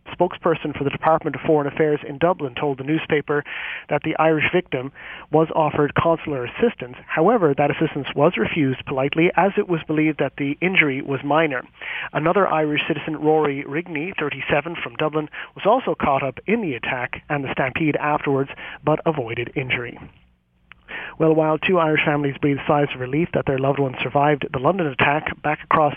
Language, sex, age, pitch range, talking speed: English, male, 40-59, 140-160 Hz, 180 wpm